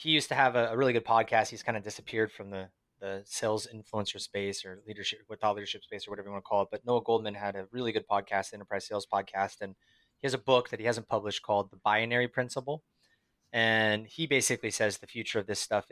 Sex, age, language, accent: male, 20-39, English, American